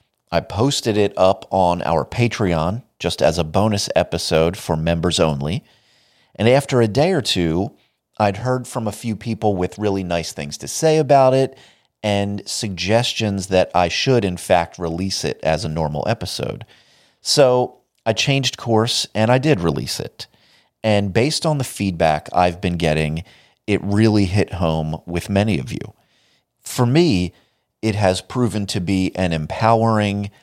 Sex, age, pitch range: male, 30-49, 85-115 Hz